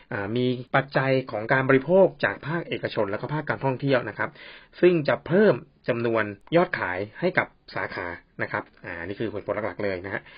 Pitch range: 110-145 Hz